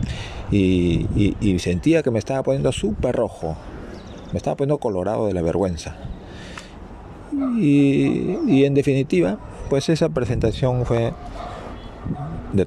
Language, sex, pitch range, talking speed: Spanish, male, 90-125 Hz, 125 wpm